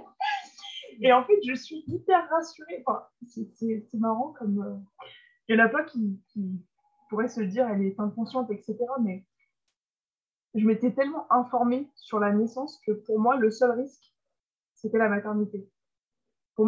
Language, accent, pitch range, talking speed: French, French, 200-250 Hz, 165 wpm